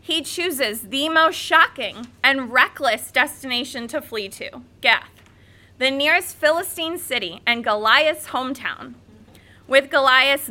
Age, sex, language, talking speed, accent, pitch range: 20-39, female, English, 120 wpm, American, 235-310 Hz